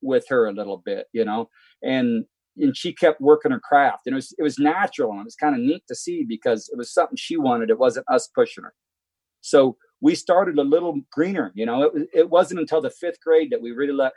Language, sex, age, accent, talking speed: English, male, 40-59, American, 245 wpm